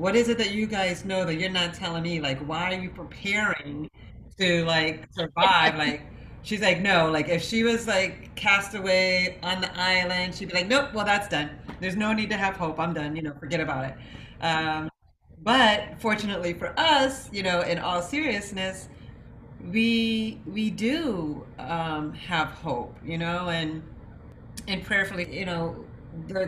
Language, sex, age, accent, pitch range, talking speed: English, female, 40-59, American, 145-180 Hz, 175 wpm